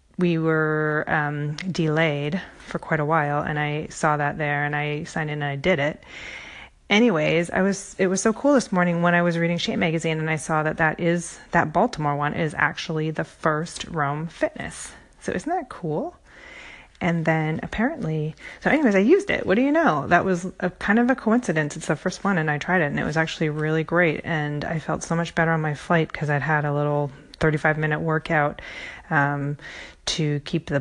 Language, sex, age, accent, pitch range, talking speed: English, female, 30-49, American, 150-180 Hz, 210 wpm